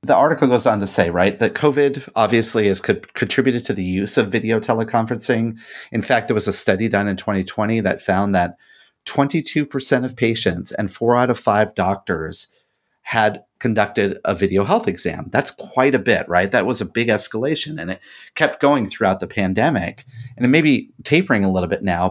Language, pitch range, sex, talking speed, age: English, 105-135 Hz, male, 195 wpm, 30-49